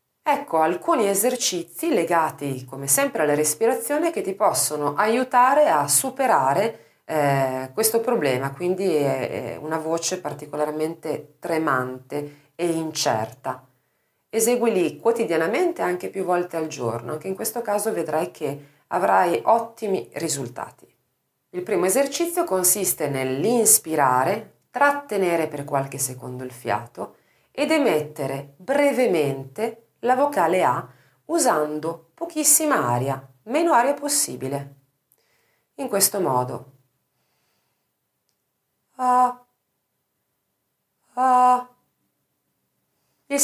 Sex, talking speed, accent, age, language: female, 95 wpm, native, 40-59, Italian